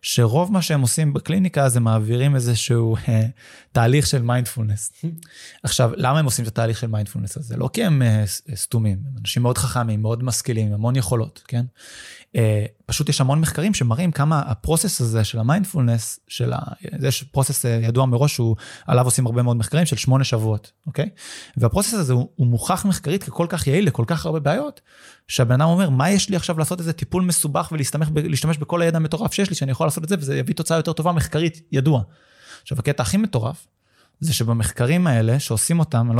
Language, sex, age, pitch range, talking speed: Hebrew, male, 20-39, 115-160 Hz, 160 wpm